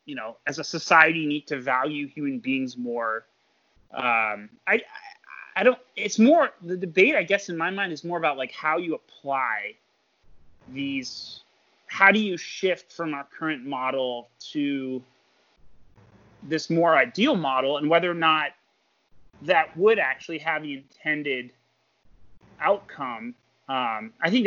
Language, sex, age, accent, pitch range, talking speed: English, male, 30-49, American, 135-190 Hz, 145 wpm